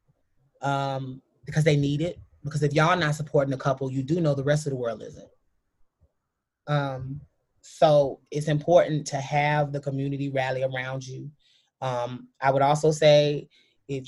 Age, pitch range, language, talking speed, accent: 30-49, 135-160 Hz, English, 160 wpm, American